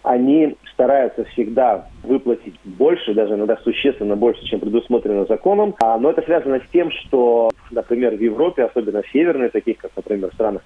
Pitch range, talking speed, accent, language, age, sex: 110-180 Hz, 165 wpm, native, Russian, 30-49, male